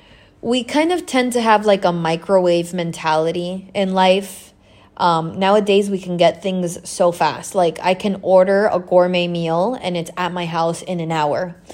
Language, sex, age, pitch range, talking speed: English, female, 20-39, 175-230 Hz, 180 wpm